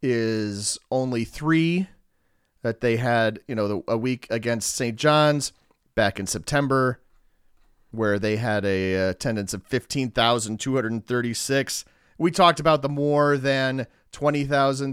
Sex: male